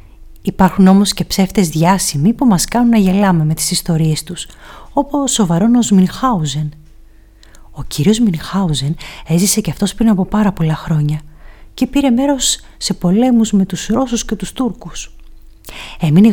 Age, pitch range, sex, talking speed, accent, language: 30-49, 150-205 Hz, female, 150 wpm, native, Greek